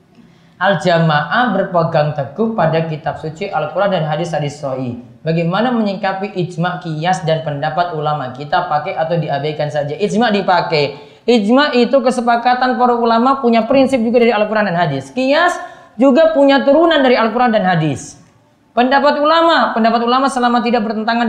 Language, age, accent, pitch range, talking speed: Indonesian, 30-49, native, 155-230 Hz, 145 wpm